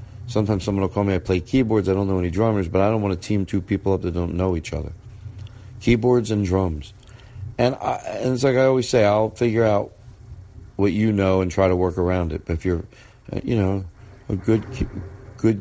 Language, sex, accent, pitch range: English, male, American, 90-115 Hz